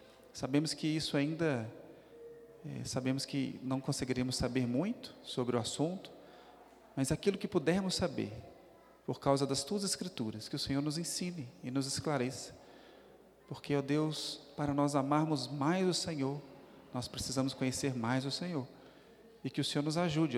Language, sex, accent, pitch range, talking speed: Portuguese, male, Brazilian, 130-160 Hz, 155 wpm